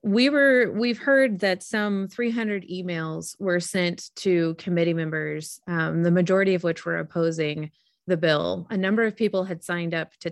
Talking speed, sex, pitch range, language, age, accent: 175 wpm, female, 170-200 Hz, English, 30-49, American